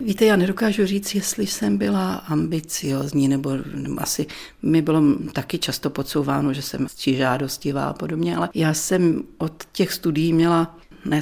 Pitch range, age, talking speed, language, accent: 145-170 Hz, 40-59, 155 wpm, Czech, native